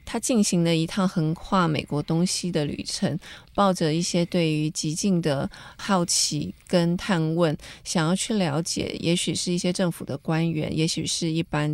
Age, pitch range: 20-39, 155-185 Hz